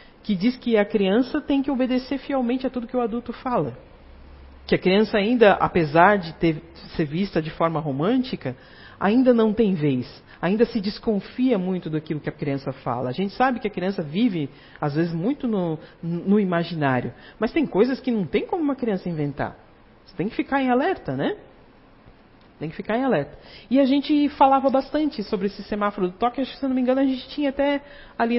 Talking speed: 200 wpm